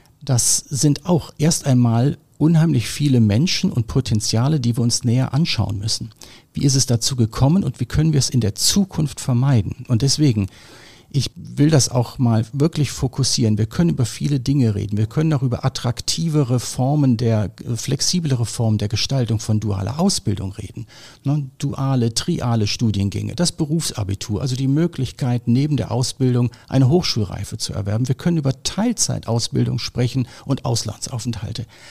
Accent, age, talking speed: German, 50-69, 155 wpm